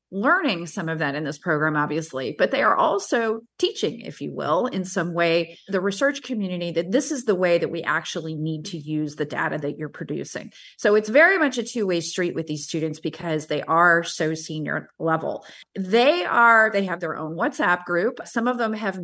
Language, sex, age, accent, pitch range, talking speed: English, female, 30-49, American, 165-220 Hz, 210 wpm